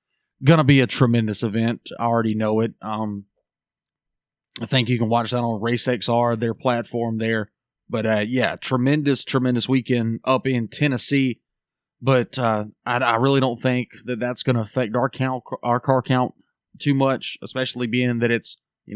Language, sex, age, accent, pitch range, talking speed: English, male, 30-49, American, 115-135 Hz, 175 wpm